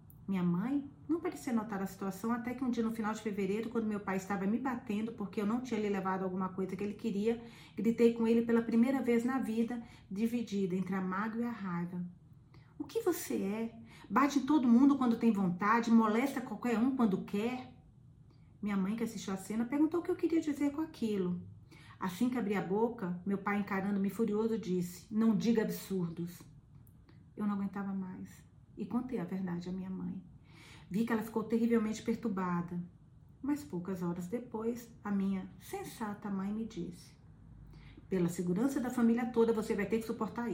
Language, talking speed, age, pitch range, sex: Portuguese, 190 wpm, 40-59, 175-230 Hz, female